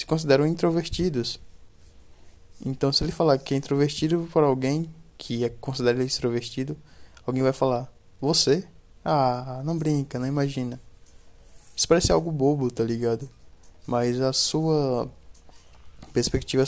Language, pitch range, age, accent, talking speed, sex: Portuguese, 95-135 Hz, 20-39, Brazilian, 130 wpm, male